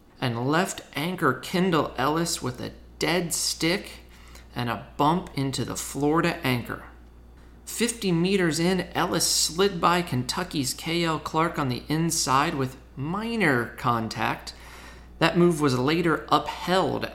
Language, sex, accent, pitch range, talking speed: English, male, American, 115-170 Hz, 125 wpm